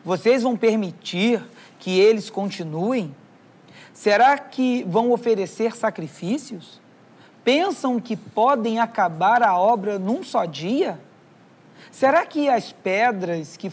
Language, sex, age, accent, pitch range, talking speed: Portuguese, male, 40-59, Brazilian, 180-230 Hz, 110 wpm